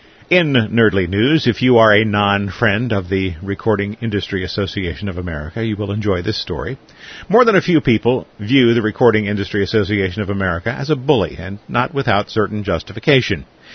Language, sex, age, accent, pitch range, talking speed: English, male, 50-69, American, 100-125 Hz, 175 wpm